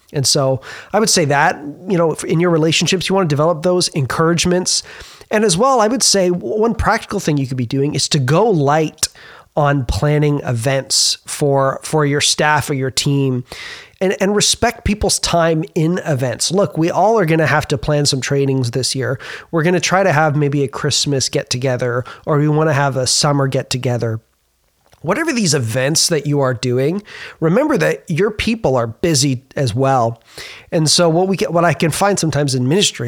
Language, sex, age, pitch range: English, male, 30-49, 135-180 Hz